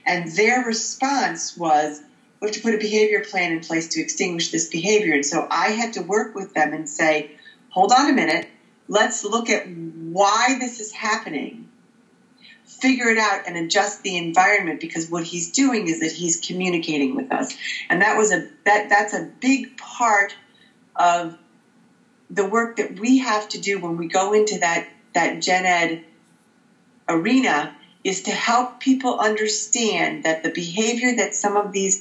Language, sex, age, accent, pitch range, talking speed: English, female, 40-59, American, 175-230 Hz, 175 wpm